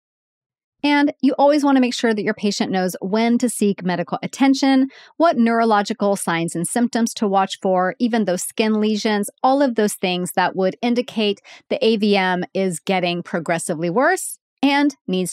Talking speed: 170 wpm